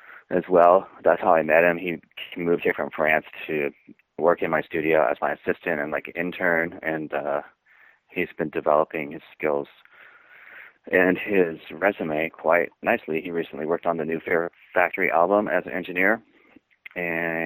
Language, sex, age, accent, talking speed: English, male, 30-49, American, 165 wpm